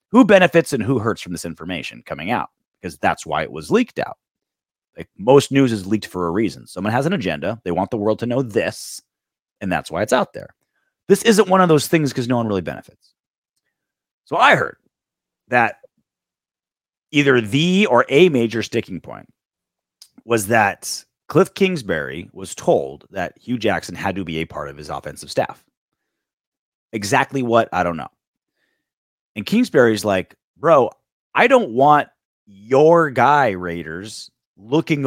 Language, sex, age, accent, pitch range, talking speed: English, male, 30-49, American, 105-150 Hz, 170 wpm